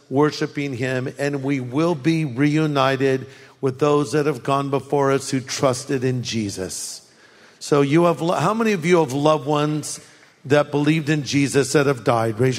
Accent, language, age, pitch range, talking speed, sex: American, English, 50-69, 140-200 Hz, 170 wpm, male